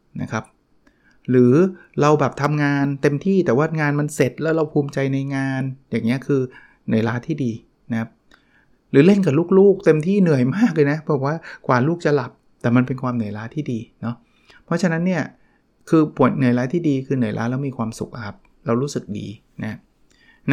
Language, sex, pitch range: Thai, male, 115-145 Hz